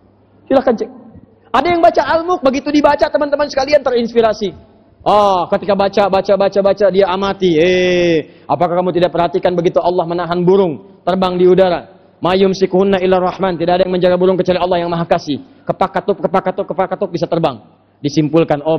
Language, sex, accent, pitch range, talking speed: Indonesian, male, native, 170-235 Hz, 165 wpm